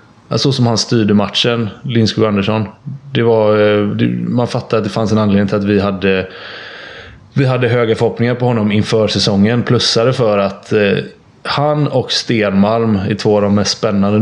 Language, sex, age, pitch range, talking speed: English, male, 20-39, 100-120 Hz, 165 wpm